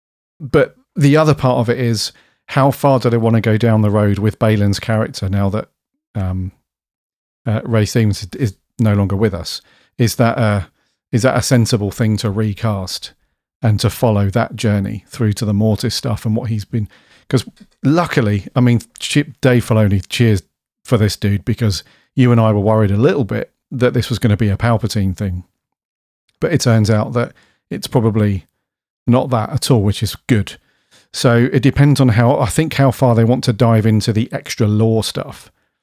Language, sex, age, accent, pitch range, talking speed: English, male, 40-59, British, 105-125 Hz, 190 wpm